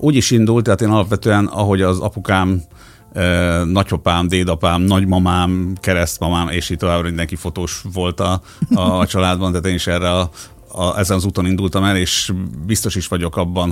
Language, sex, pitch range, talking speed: Hungarian, male, 85-95 Hz, 165 wpm